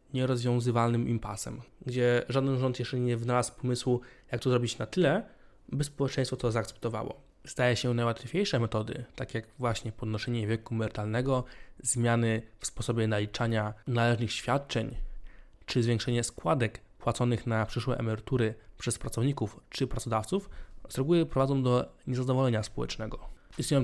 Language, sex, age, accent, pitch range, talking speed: Polish, male, 20-39, native, 115-135 Hz, 130 wpm